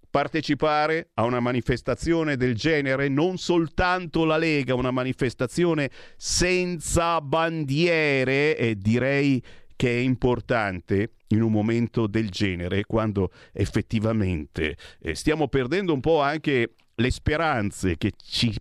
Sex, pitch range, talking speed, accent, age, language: male, 110-180 Hz, 115 wpm, native, 50-69, Italian